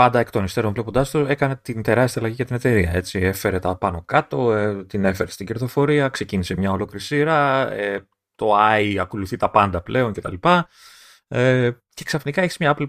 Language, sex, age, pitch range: Greek, male, 30-49, 100-145 Hz